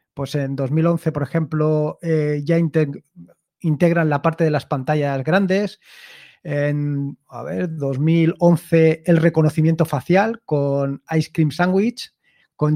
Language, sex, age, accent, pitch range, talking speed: Spanish, male, 30-49, Spanish, 150-180 Hz, 125 wpm